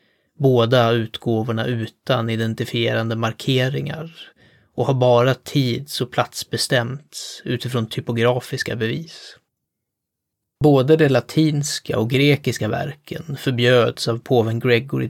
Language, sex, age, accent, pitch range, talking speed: Swedish, male, 20-39, native, 115-135 Hz, 100 wpm